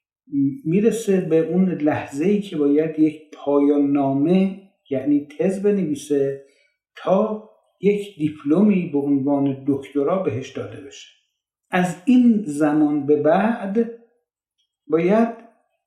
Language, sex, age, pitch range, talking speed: Persian, male, 50-69, 150-210 Hz, 100 wpm